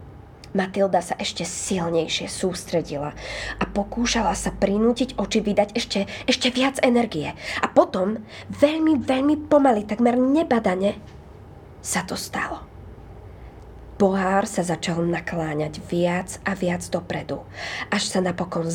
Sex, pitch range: female, 195-255 Hz